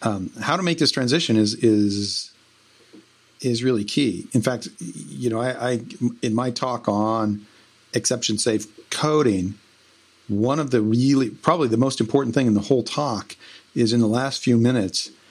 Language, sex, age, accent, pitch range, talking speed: English, male, 50-69, American, 110-130 Hz, 165 wpm